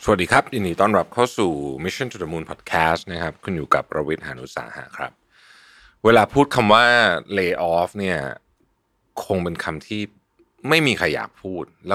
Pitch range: 80-115 Hz